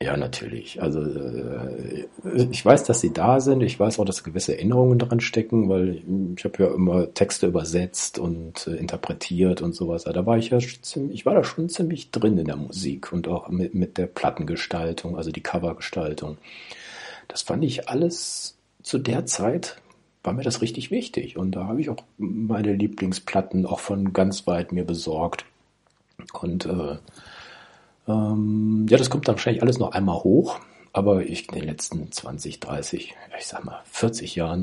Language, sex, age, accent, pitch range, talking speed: German, male, 60-79, German, 90-120 Hz, 180 wpm